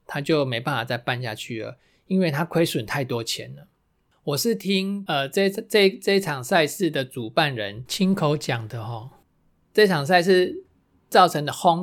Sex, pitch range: male, 125-165 Hz